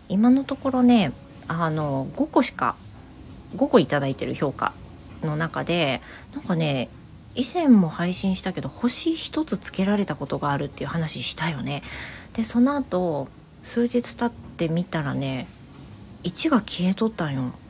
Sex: female